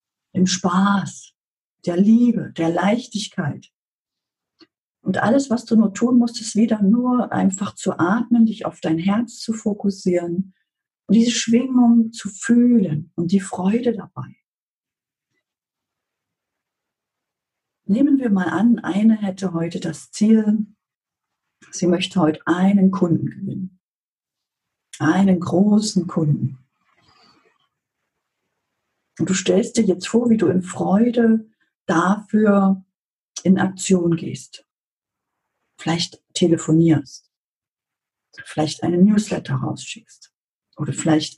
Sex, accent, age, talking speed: female, German, 50-69, 105 wpm